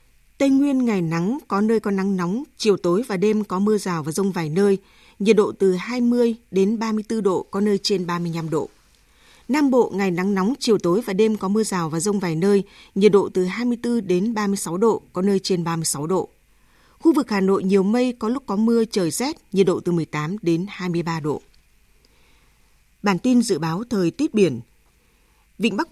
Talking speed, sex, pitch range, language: 205 wpm, female, 180-225 Hz, Vietnamese